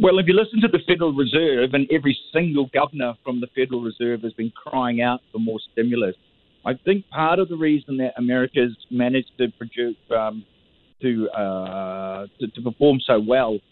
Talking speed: 185 wpm